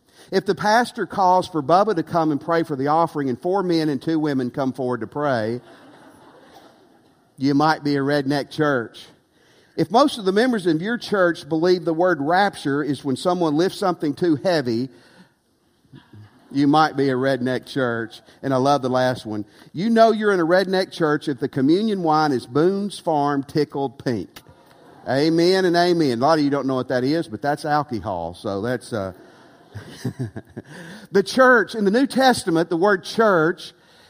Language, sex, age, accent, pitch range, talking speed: English, male, 50-69, American, 145-195 Hz, 180 wpm